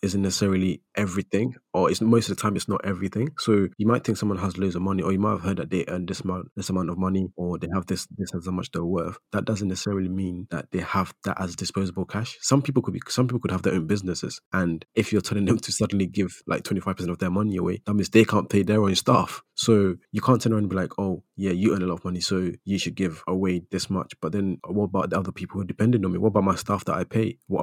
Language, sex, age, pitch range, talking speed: English, male, 20-39, 95-110 Hz, 280 wpm